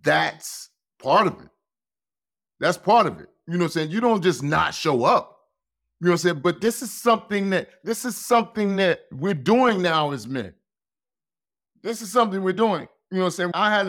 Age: 30-49